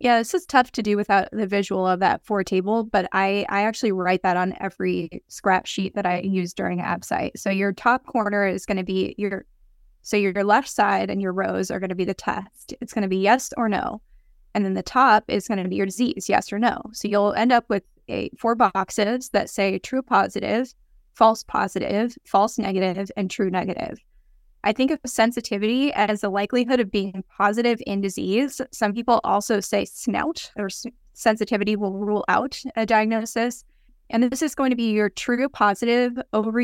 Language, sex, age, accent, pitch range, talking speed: English, female, 20-39, American, 195-235 Hz, 200 wpm